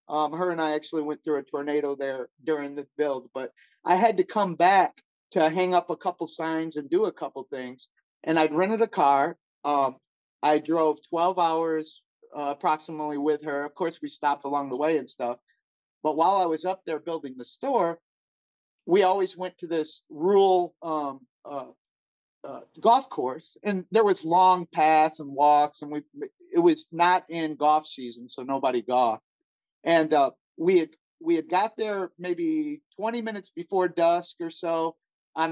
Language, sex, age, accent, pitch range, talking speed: English, male, 40-59, American, 145-185 Hz, 180 wpm